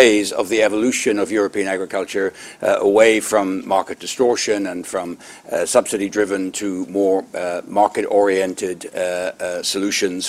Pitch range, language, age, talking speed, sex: 95-120 Hz, English, 60-79, 130 wpm, male